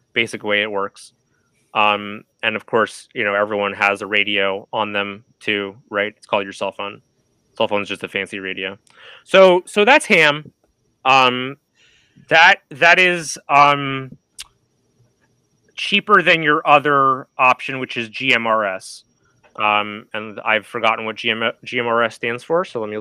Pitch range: 115-170 Hz